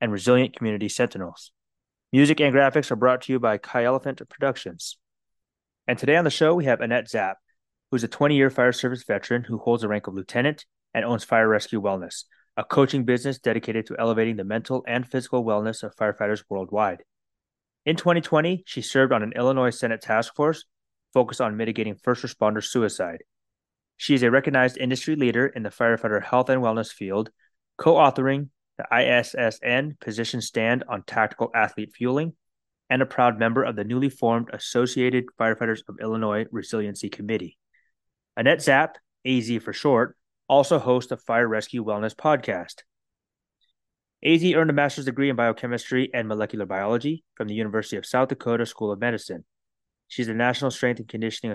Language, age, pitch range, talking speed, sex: English, 20-39, 110-135 Hz, 170 wpm, male